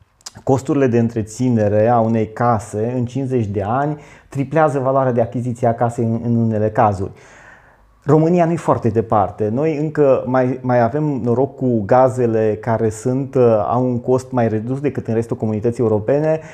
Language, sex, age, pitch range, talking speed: Romanian, male, 30-49, 115-140 Hz, 150 wpm